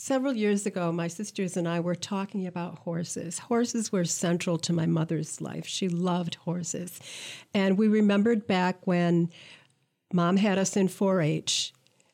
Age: 50-69